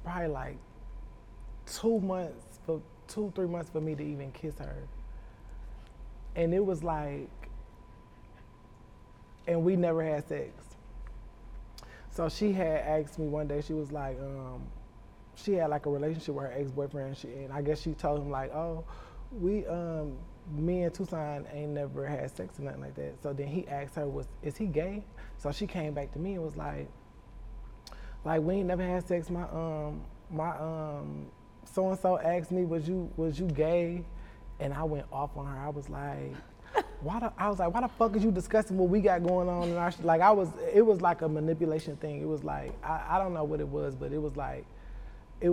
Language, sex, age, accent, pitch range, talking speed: English, male, 20-39, American, 140-175 Hz, 200 wpm